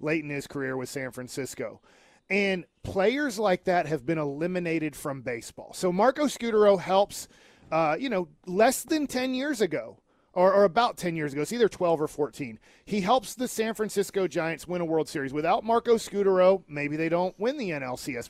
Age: 40-59